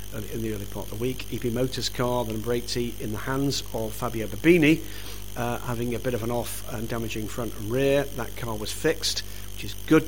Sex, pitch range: male, 105-130 Hz